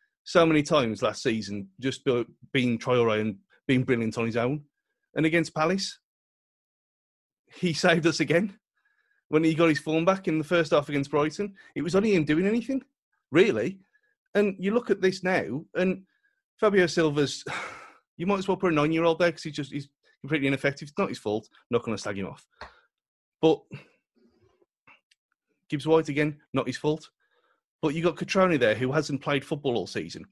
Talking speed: 180 wpm